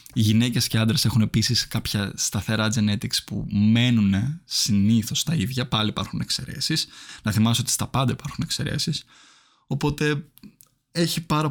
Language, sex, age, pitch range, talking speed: Greek, male, 20-39, 110-135 Hz, 140 wpm